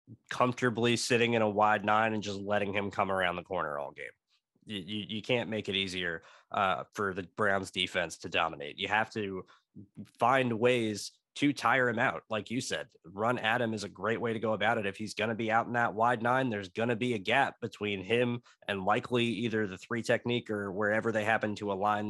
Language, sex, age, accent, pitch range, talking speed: English, male, 20-39, American, 105-125 Hz, 225 wpm